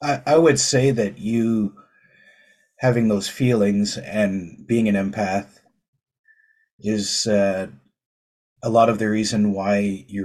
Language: English